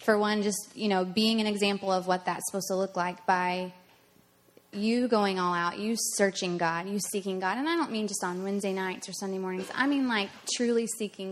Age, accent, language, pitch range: 20-39, American, English, 195-235 Hz